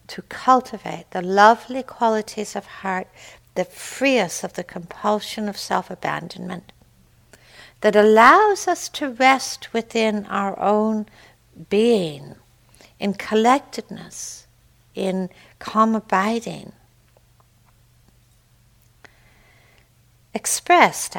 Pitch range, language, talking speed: 160-215 Hz, English, 85 wpm